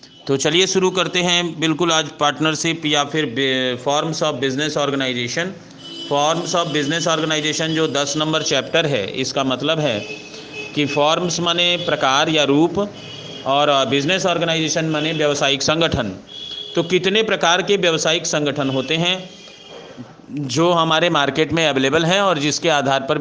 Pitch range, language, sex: 145-185 Hz, Hindi, male